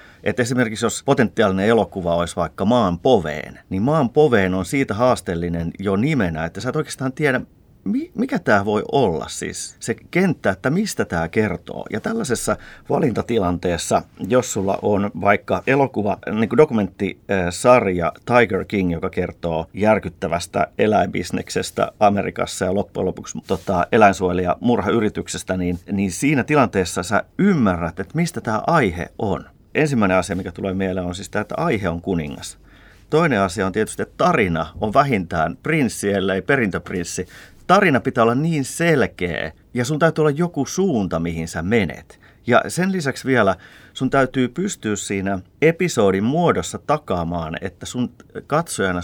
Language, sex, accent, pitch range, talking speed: Finnish, male, native, 90-125 Hz, 145 wpm